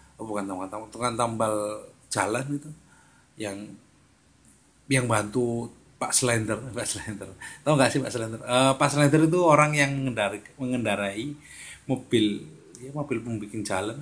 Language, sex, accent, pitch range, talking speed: Indonesian, male, native, 105-140 Hz, 140 wpm